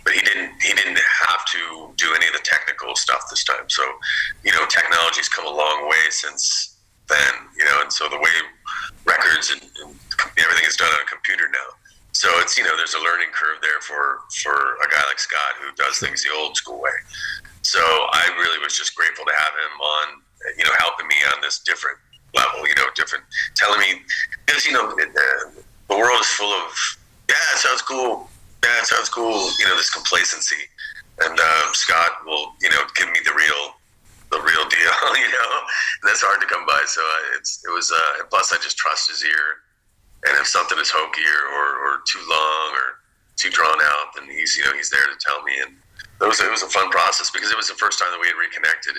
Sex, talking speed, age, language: male, 220 wpm, 30-49, English